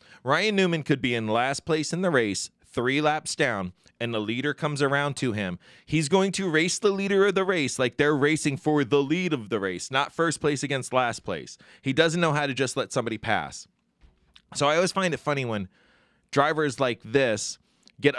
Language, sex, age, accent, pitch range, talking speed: English, male, 20-39, American, 125-170 Hz, 210 wpm